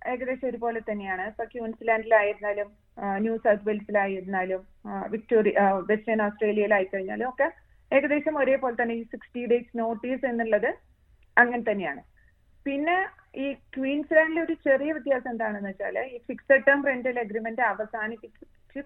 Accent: native